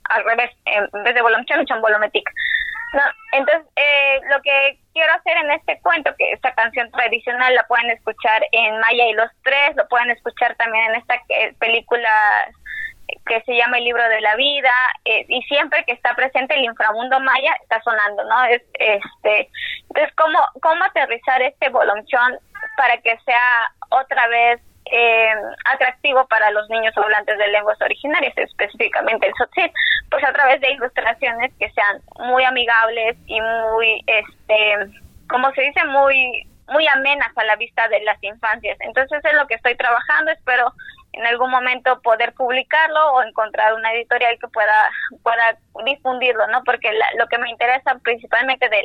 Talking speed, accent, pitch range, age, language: 165 wpm, Mexican, 225-275 Hz, 20-39, Spanish